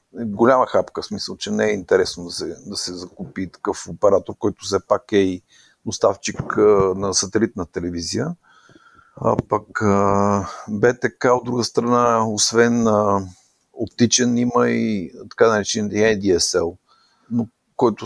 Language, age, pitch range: Bulgarian, 50-69, 95-115 Hz